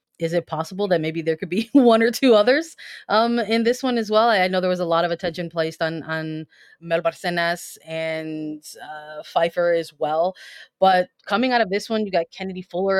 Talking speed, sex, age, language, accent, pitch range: 215 wpm, female, 20-39, English, American, 160-190 Hz